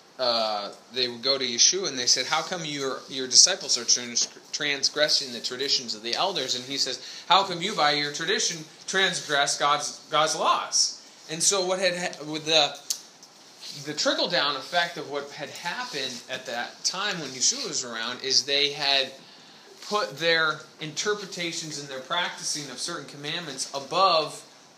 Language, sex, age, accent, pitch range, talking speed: English, male, 20-39, American, 140-195 Hz, 165 wpm